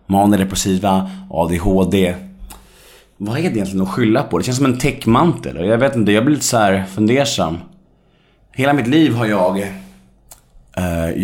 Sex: male